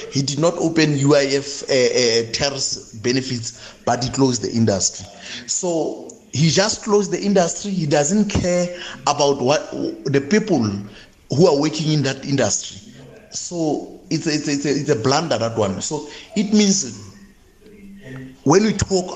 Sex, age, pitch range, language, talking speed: male, 30-49, 95-150 Hz, English, 155 wpm